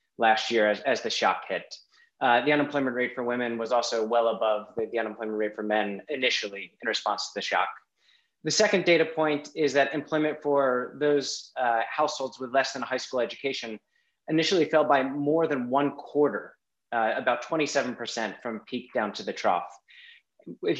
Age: 30-49